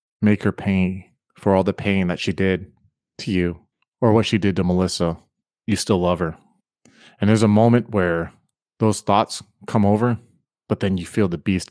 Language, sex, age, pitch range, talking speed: English, male, 30-49, 90-110 Hz, 190 wpm